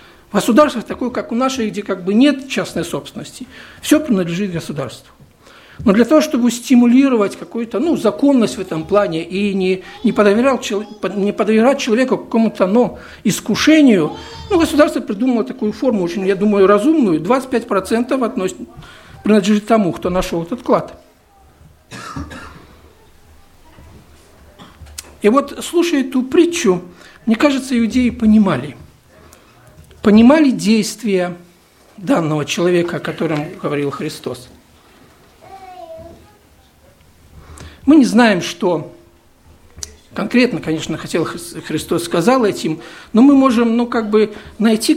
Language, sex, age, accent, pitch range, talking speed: Russian, male, 60-79, native, 165-245 Hz, 115 wpm